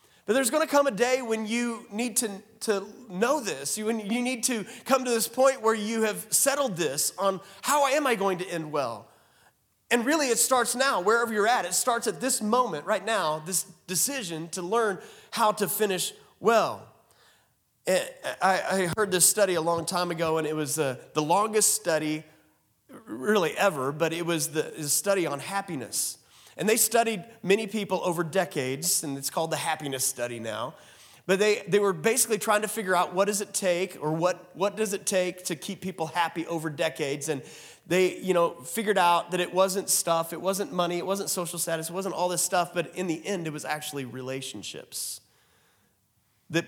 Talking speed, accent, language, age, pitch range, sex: 195 wpm, American, English, 30-49, 165-220 Hz, male